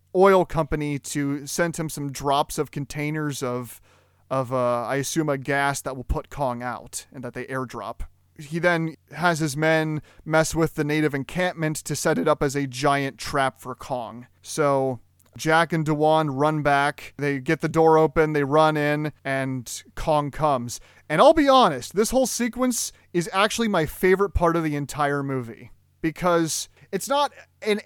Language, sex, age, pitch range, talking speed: English, male, 30-49, 135-170 Hz, 175 wpm